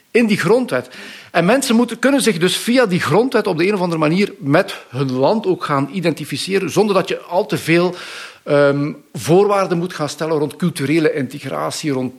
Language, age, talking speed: Dutch, 50-69, 180 wpm